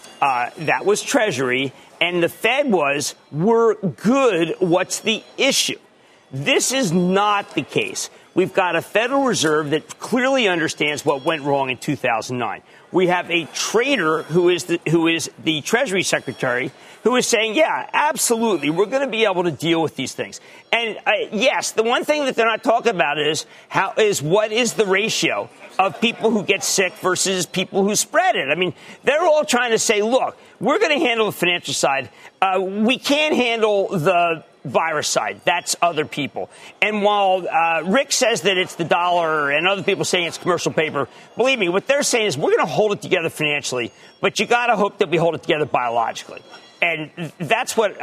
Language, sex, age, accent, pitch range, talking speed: English, male, 40-59, American, 165-220 Hz, 190 wpm